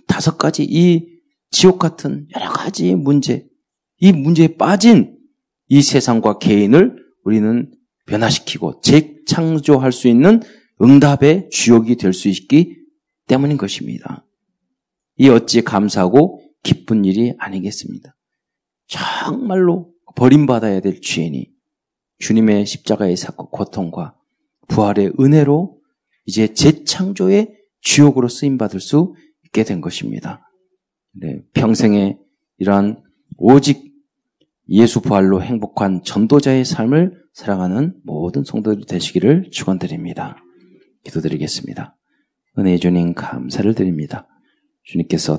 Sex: male